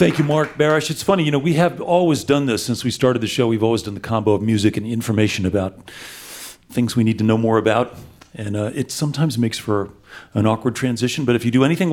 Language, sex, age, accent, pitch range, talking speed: English, male, 40-59, American, 110-135 Hz, 245 wpm